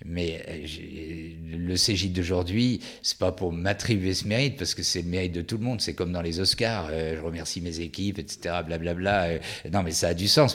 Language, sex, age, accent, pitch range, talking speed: French, male, 50-69, French, 85-110 Hz, 235 wpm